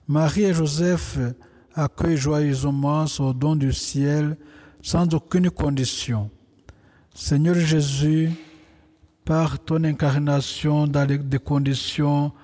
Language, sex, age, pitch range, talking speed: French, male, 60-79, 135-155 Hz, 95 wpm